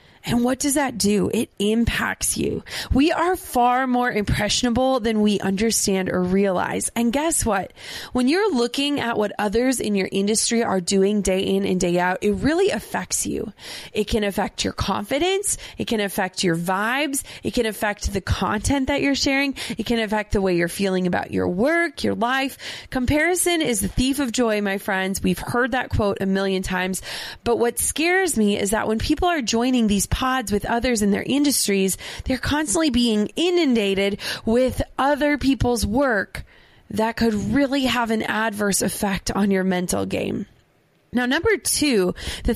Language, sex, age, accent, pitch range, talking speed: English, female, 20-39, American, 200-270 Hz, 180 wpm